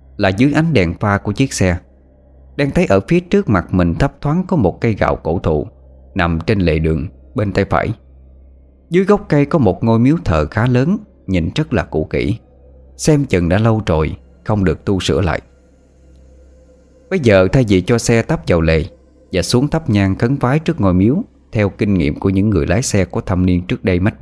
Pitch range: 80-125 Hz